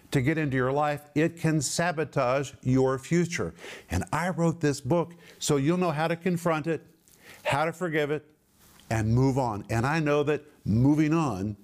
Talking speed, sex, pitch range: 180 wpm, male, 120-150 Hz